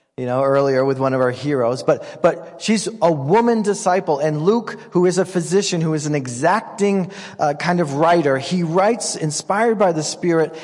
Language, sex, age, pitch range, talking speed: English, male, 40-59, 145-180 Hz, 190 wpm